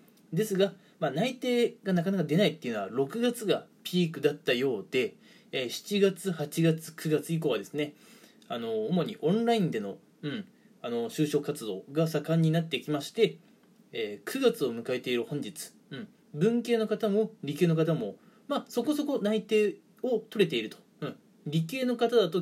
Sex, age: male, 20-39